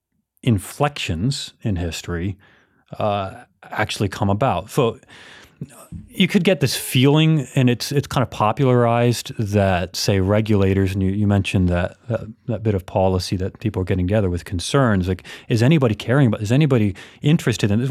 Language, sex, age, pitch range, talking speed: English, male, 30-49, 95-130 Hz, 165 wpm